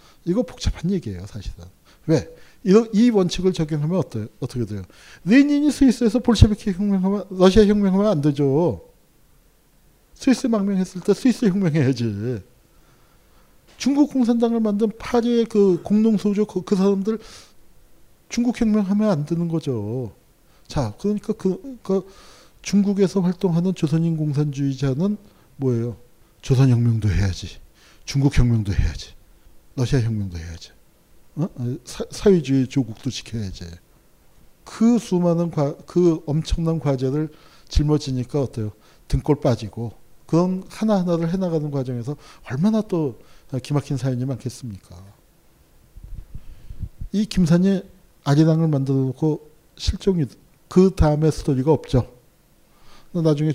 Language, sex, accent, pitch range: Korean, male, native, 125-195 Hz